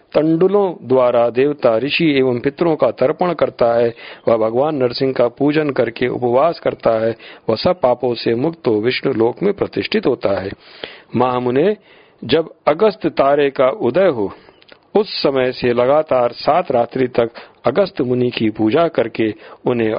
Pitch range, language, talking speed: 115-155 Hz, Hindi, 155 wpm